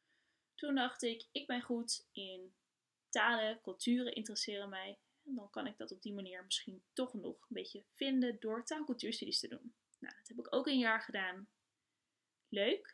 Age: 10-29